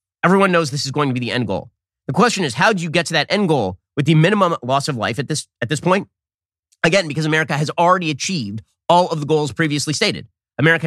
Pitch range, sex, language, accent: 110-160 Hz, male, English, American